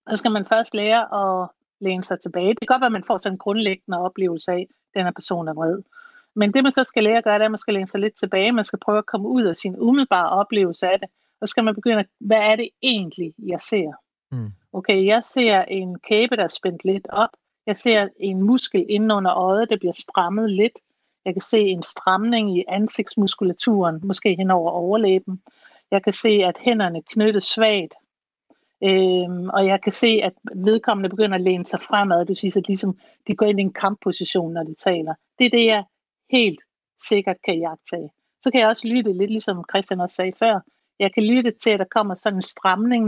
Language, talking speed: Danish, 225 wpm